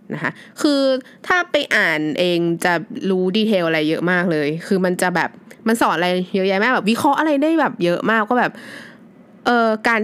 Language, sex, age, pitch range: Thai, female, 20-39, 170-230 Hz